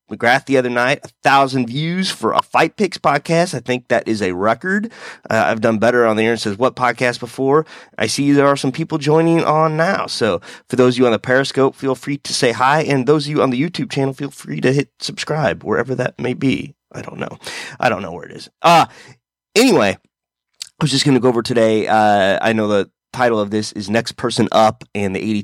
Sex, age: male, 30-49